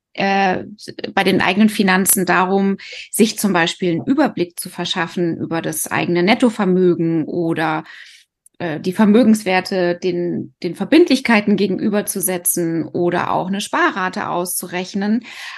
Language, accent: German, German